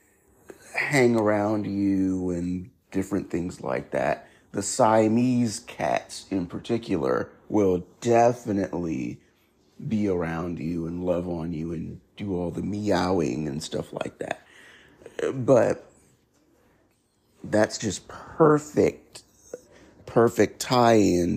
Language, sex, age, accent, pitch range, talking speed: English, male, 50-69, American, 95-115 Hz, 105 wpm